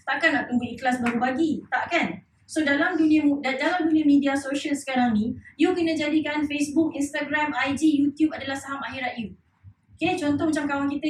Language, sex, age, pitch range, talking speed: English, female, 20-39, 260-320 Hz, 175 wpm